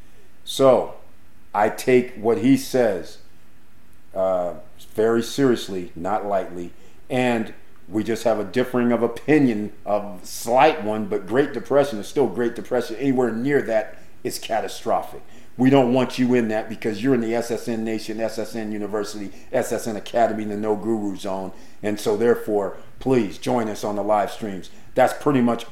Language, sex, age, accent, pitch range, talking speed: English, male, 40-59, American, 105-125 Hz, 160 wpm